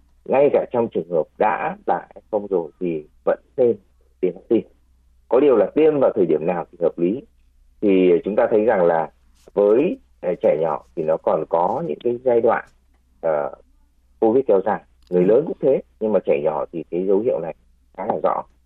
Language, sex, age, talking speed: Vietnamese, male, 30-49, 200 wpm